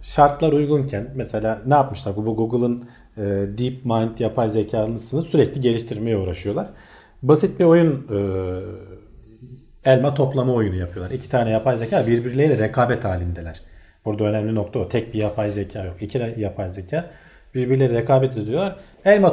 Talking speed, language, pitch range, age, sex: 145 wpm, Turkish, 105-145 Hz, 40-59, male